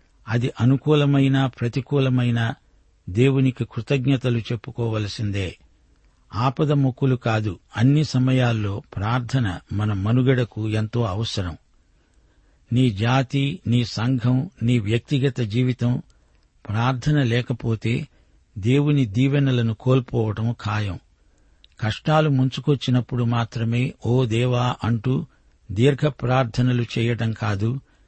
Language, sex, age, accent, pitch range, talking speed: Telugu, male, 60-79, native, 110-135 Hz, 85 wpm